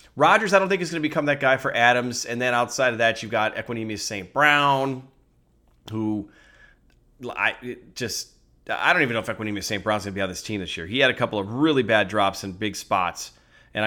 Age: 30-49